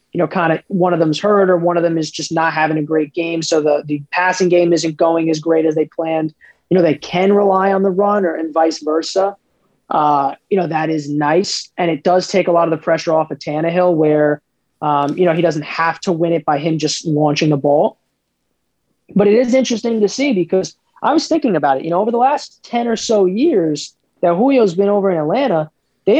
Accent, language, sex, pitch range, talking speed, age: American, English, male, 155-195 Hz, 240 wpm, 20-39